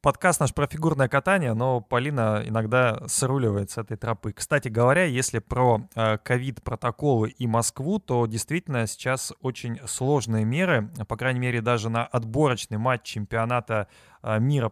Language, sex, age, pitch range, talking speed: Russian, male, 20-39, 115-135 Hz, 140 wpm